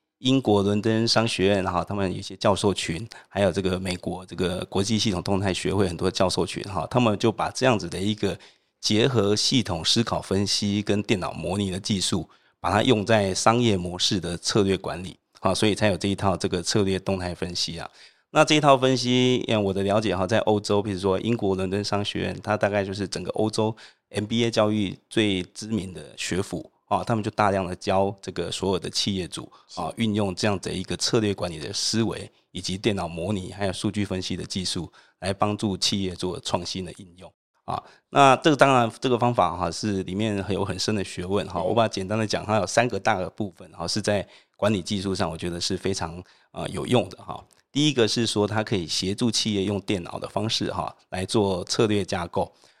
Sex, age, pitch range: male, 30-49, 95-110 Hz